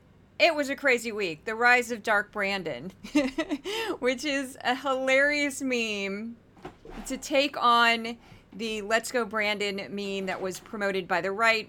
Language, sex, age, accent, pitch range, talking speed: English, female, 30-49, American, 195-260 Hz, 150 wpm